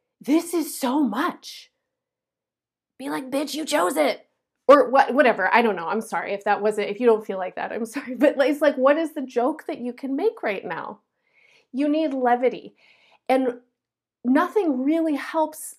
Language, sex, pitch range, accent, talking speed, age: English, female, 205-285 Hz, American, 185 wpm, 30-49